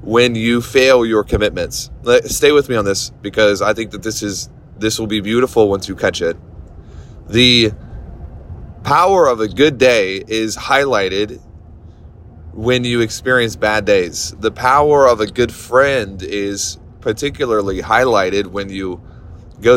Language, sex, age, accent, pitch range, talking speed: English, male, 20-39, American, 95-120 Hz, 150 wpm